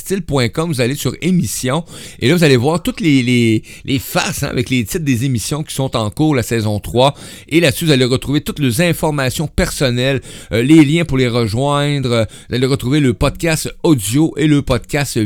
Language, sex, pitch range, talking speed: French, male, 110-145 Hz, 205 wpm